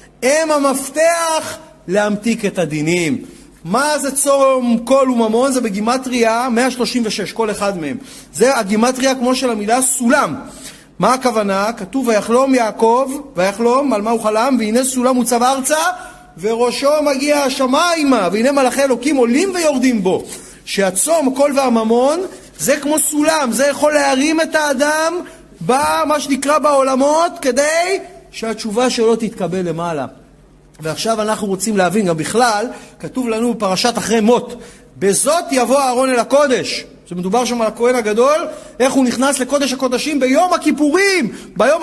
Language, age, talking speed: Hebrew, 30-49, 135 wpm